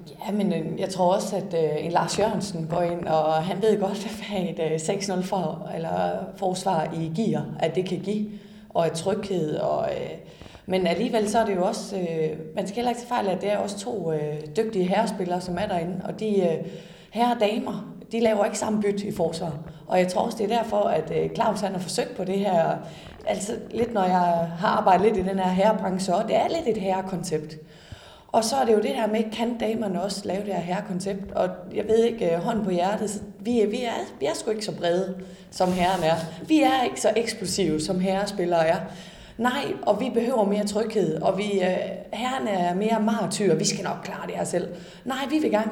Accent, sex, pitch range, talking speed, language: native, female, 180-220 Hz, 210 wpm, Danish